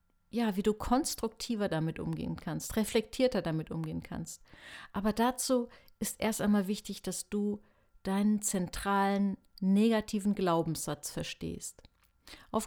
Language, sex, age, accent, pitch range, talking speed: German, female, 50-69, German, 180-225 Hz, 120 wpm